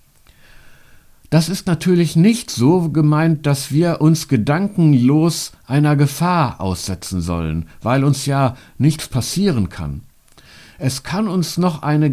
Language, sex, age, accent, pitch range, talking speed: German, male, 60-79, German, 120-175 Hz, 125 wpm